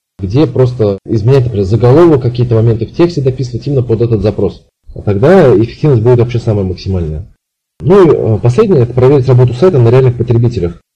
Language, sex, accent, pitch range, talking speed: Russian, male, native, 110-135 Hz, 170 wpm